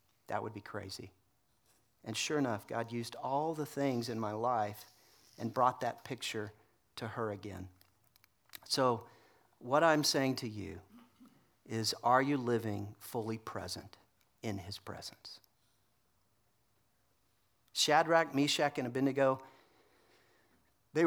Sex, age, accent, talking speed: male, 40-59, American, 120 wpm